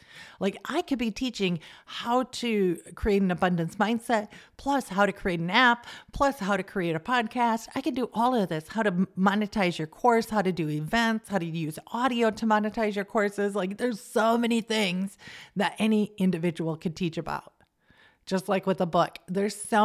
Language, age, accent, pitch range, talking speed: English, 40-59, American, 170-215 Hz, 195 wpm